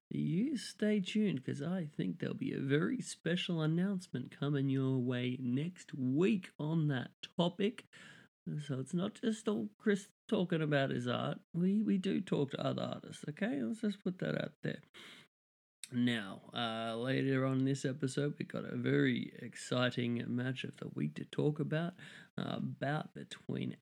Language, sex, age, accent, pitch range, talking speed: English, male, 30-49, Australian, 145-220 Hz, 165 wpm